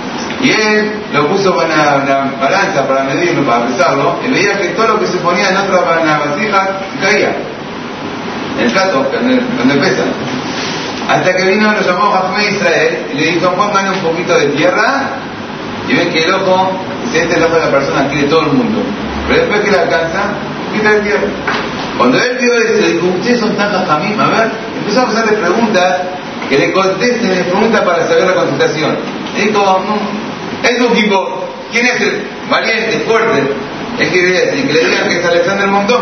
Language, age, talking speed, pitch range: Spanish, 30-49, 190 wpm, 180-225 Hz